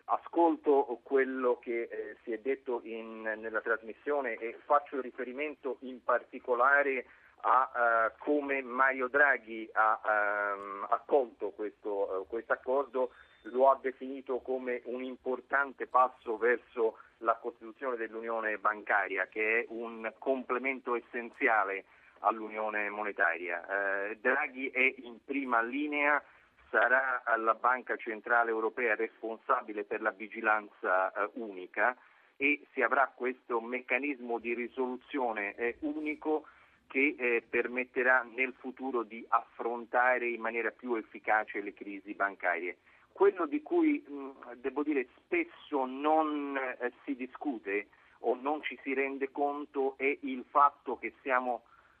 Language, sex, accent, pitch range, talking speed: Italian, male, native, 115-145 Hz, 120 wpm